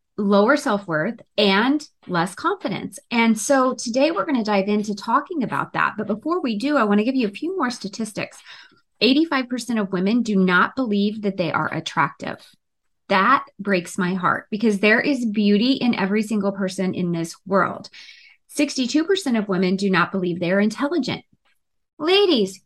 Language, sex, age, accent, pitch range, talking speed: English, female, 20-39, American, 190-270 Hz, 170 wpm